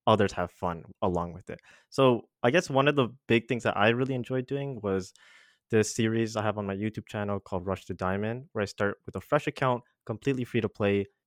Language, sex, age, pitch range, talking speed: English, male, 20-39, 100-125 Hz, 230 wpm